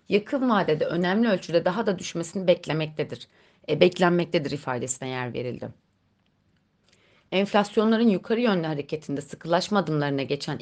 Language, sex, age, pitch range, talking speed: Turkish, female, 30-49, 150-205 Hz, 115 wpm